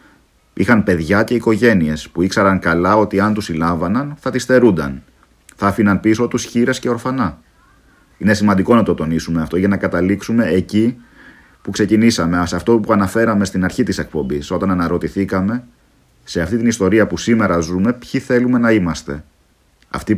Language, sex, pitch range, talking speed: Greek, male, 85-115 Hz, 165 wpm